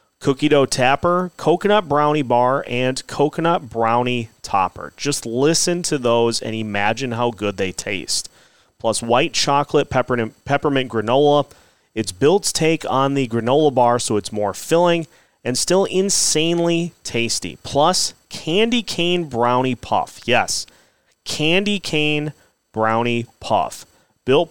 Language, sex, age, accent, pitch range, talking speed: English, male, 30-49, American, 120-165 Hz, 125 wpm